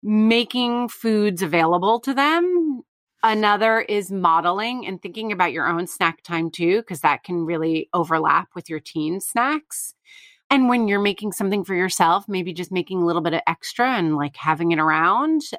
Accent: American